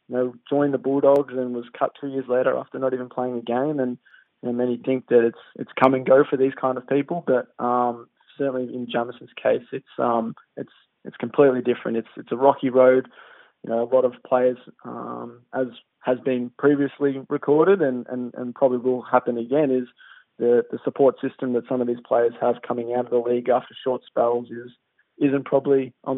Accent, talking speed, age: Australian, 210 wpm, 20-39